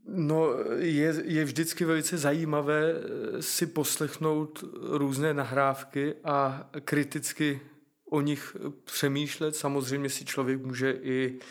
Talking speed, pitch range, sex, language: 100 wpm, 135-145 Hz, male, Czech